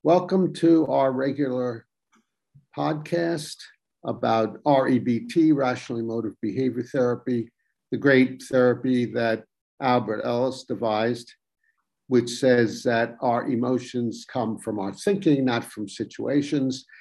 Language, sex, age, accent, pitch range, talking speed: English, male, 50-69, American, 115-145 Hz, 105 wpm